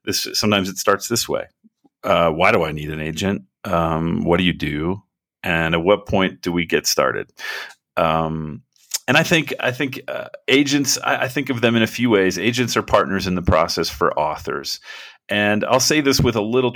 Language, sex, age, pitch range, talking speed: English, male, 40-59, 95-125 Hz, 210 wpm